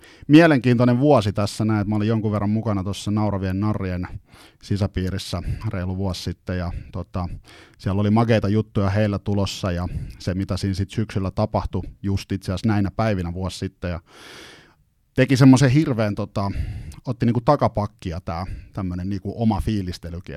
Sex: male